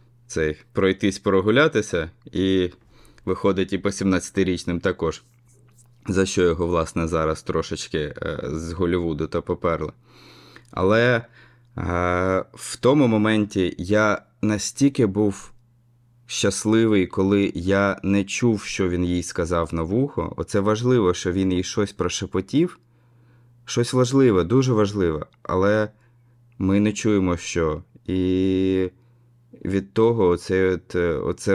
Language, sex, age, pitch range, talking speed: Ukrainian, male, 20-39, 90-115 Hz, 110 wpm